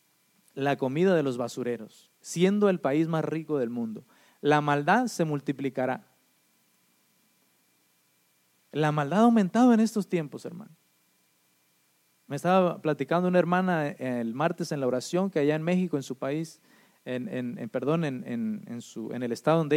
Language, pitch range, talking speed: English, 135-195 Hz, 160 wpm